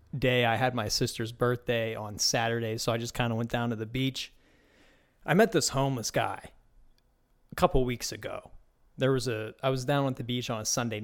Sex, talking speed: male, 210 wpm